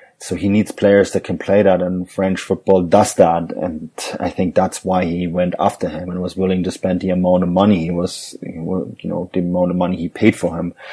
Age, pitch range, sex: 30-49, 90-95 Hz, male